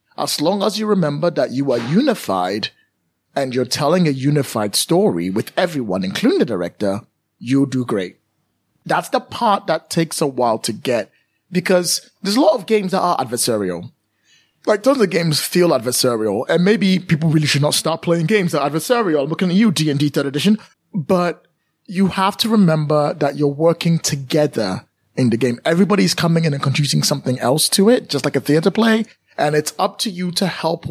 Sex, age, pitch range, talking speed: male, 30-49, 135-190 Hz, 190 wpm